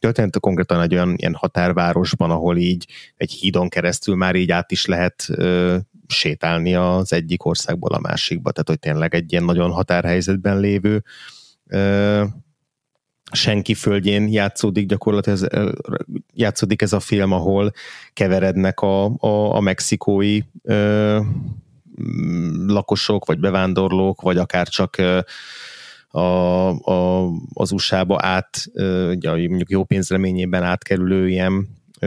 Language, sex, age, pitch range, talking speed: Hungarian, male, 30-49, 90-105 Hz, 120 wpm